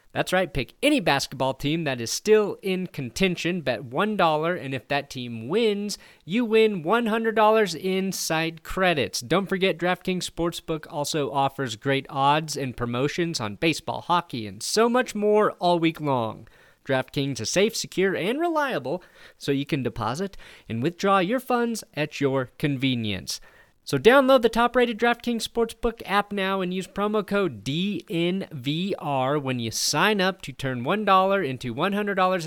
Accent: American